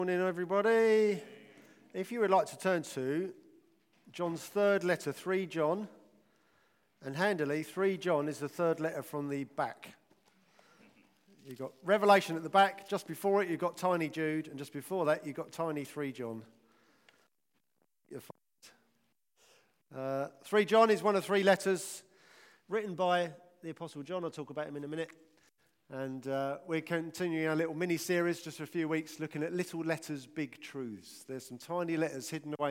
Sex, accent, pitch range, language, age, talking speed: male, British, 145-185 Hz, English, 40-59, 170 wpm